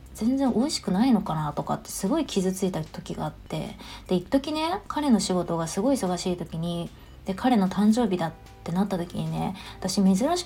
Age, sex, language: 20-39, female, Japanese